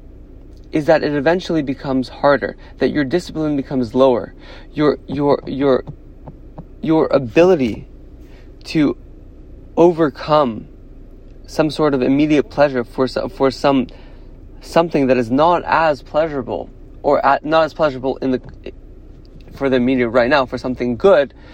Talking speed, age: 130 wpm, 20-39